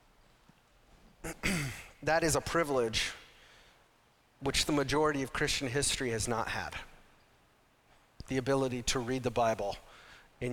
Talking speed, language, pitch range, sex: 110 wpm, English, 120-150 Hz, male